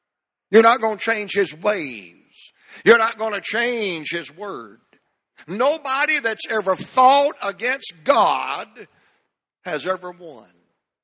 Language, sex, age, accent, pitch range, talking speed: English, male, 60-79, American, 180-235 Hz, 125 wpm